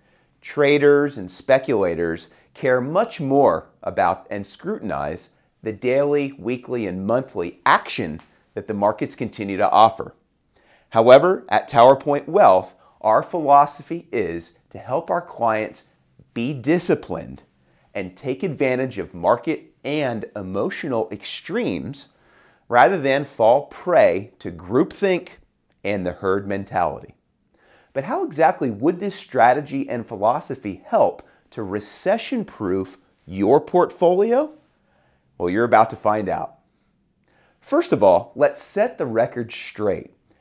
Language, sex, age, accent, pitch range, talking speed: English, male, 40-59, American, 100-165 Hz, 120 wpm